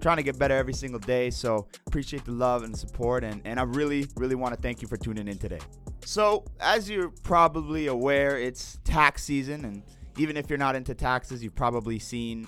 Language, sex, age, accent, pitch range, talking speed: English, male, 20-39, American, 110-145 Hz, 210 wpm